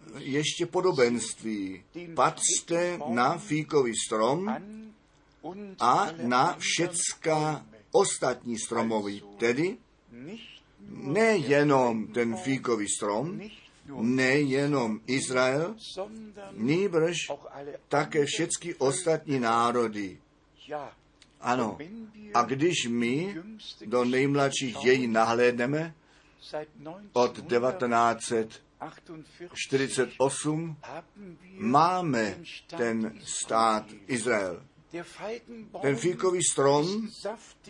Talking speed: 65 wpm